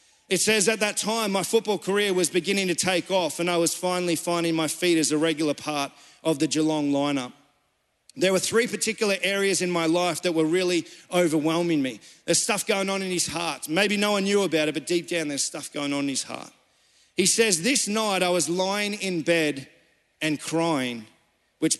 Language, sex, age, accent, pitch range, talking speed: English, male, 40-59, Australian, 155-195 Hz, 210 wpm